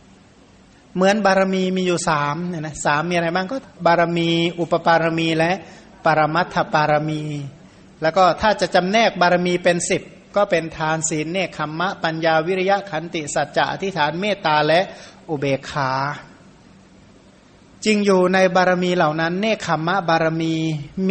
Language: Thai